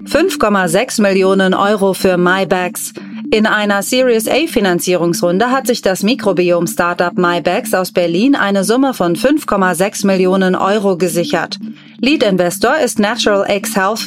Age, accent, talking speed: 30-49, German, 125 wpm